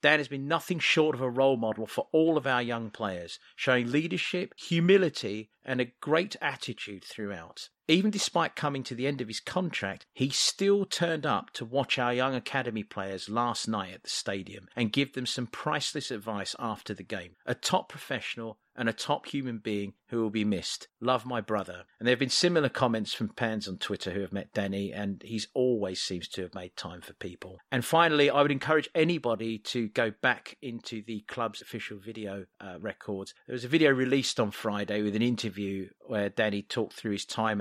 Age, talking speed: 40-59, 205 wpm